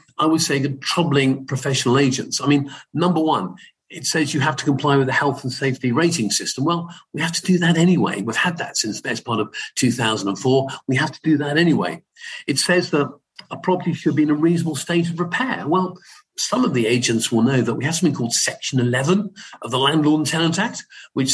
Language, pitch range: English, 125-160 Hz